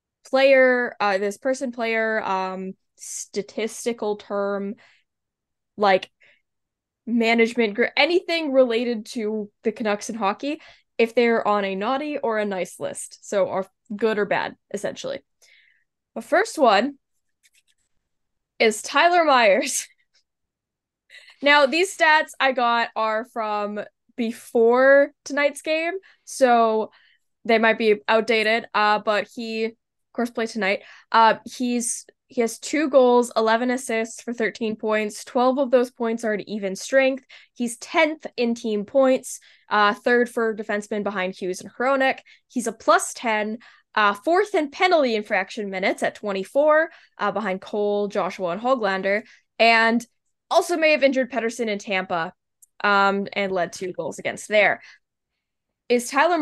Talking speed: 135 wpm